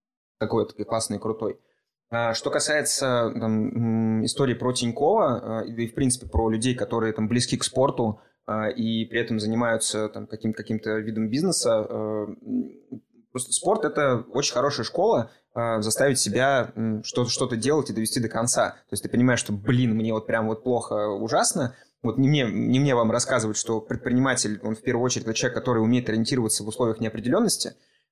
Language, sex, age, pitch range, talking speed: Russian, male, 20-39, 110-125 Hz, 160 wpm